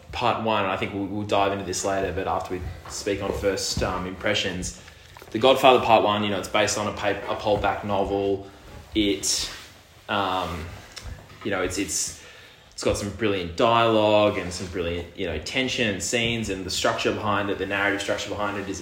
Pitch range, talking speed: 95-110 Hz, 195 wpm